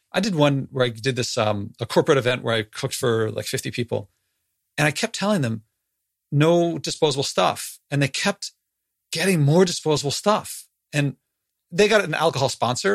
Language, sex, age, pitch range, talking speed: English, male, 40-59, 120-155 Hz, 180 wpm